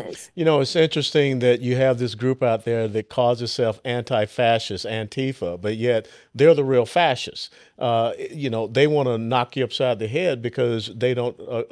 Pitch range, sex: 115-140 Hz, male